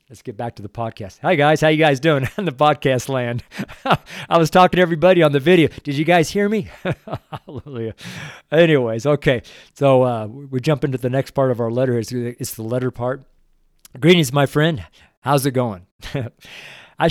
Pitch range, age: 115-150 Hz, 50-69